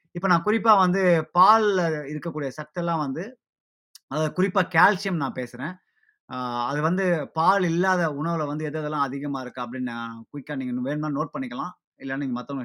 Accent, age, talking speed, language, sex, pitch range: native, 20-39, 150 wpm, Tamil, male, 130-165 Hz